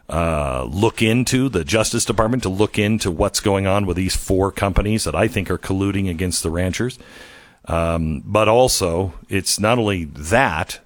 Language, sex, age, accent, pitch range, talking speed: English, male, 50-69, American, 90-110 Hz, 170 wpm